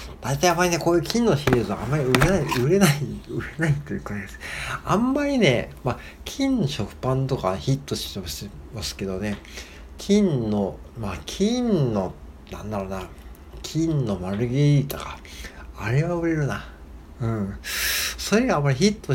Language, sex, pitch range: Japanese, male, 95-140 Hz